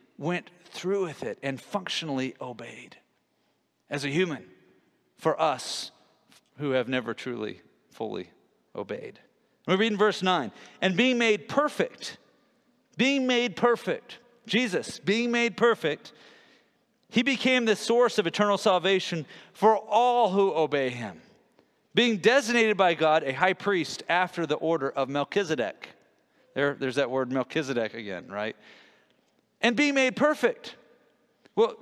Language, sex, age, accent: English, male, 40-59, American